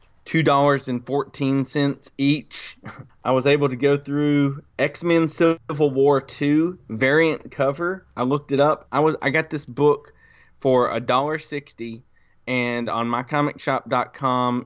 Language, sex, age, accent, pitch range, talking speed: English, male, 20-39, American, 120-145 Hz, 115 wpm